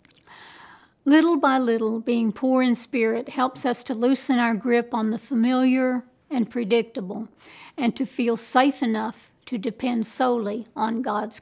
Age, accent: 60-79, American